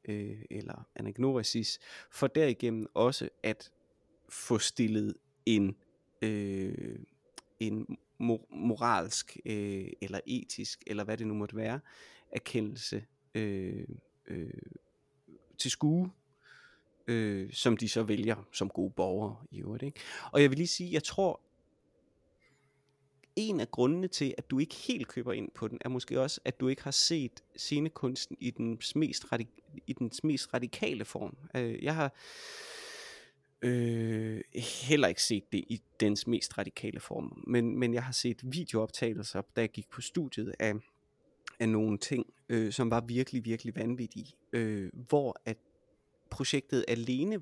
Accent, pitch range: native, 110-140 Hz